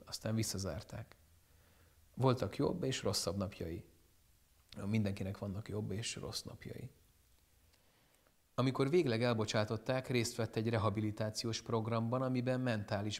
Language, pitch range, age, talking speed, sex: Hungarian, 100-120 Hz, 30-49, 105 wpm, male